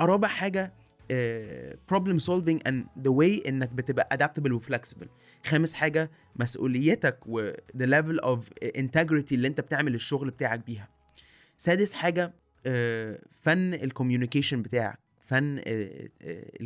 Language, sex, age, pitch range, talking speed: Arabic, male, 20-39, 115-155 Hz, 125 wpm